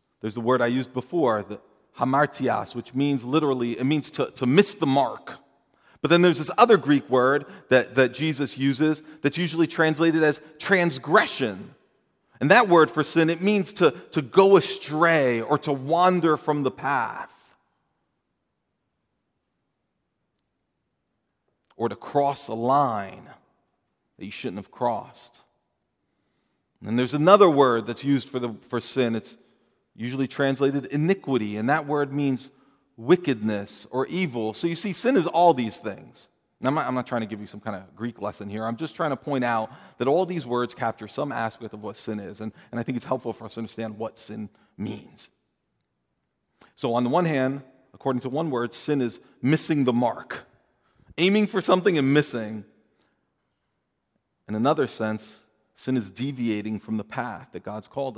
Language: English